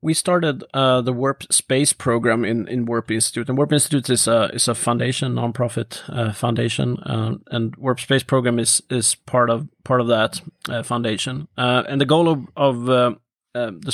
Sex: male